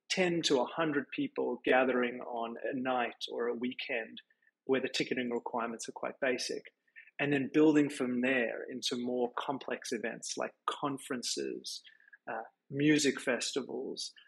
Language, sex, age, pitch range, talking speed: English, male, 30-49, 125-155 Hz, 135 wpm